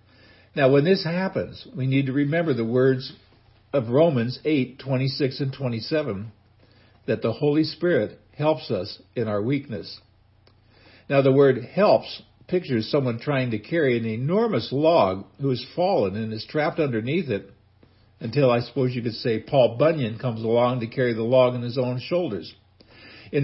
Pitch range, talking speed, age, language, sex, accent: 110-145 Hz, 160 wpm, 60-79, English, male, American